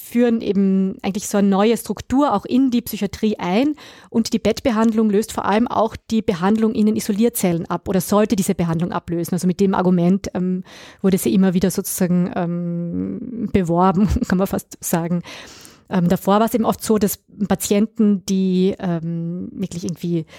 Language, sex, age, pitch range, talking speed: German, female, 20-39, 185-215 Hz, 175 wpm